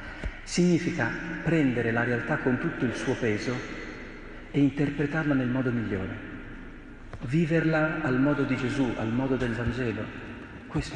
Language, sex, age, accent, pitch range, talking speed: Italian, male, 40-59, native, 110-140 Hz, 130 wpm